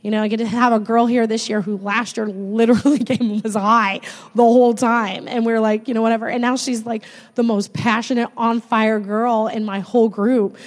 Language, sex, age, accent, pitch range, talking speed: English, female, 20-39, American, 215-255 Hz, 240 wpm